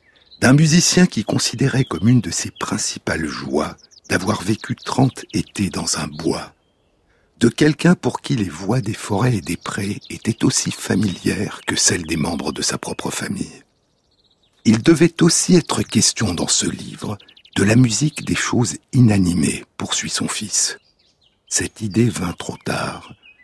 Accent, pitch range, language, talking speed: French, 95-140 Hz, French, 155 wpm